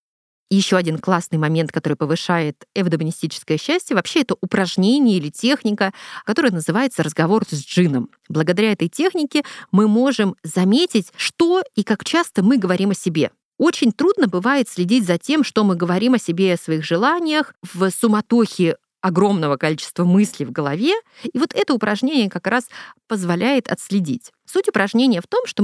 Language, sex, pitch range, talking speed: Russian, female, 180-260 Hz, 155 wpm